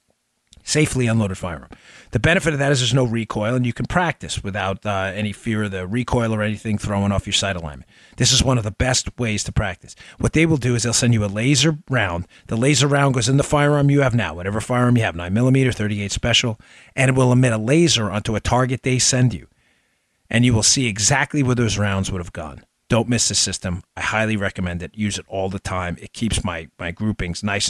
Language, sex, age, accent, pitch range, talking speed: English, male, 40-59, American, 100-130 Hz, 235 wpm